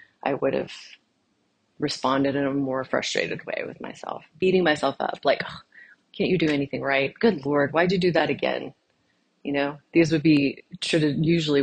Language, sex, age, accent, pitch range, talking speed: English, female, 30-49, American, 145-185 Hz, 185 wpm